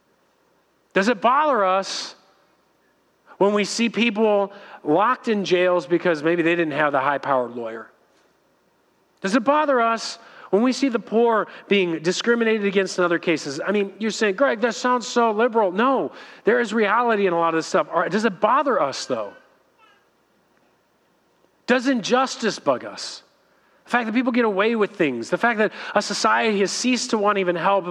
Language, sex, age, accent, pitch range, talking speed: English, male, 40-59, American, 180-230 Hz, 175 wpm